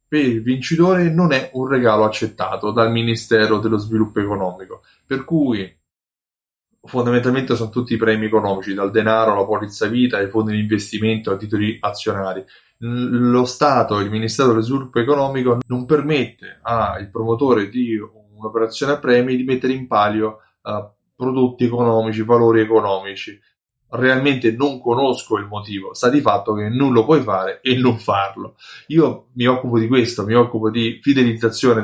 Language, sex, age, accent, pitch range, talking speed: Italian, male, 20-39, native, 105-140 Hz, 155 wpm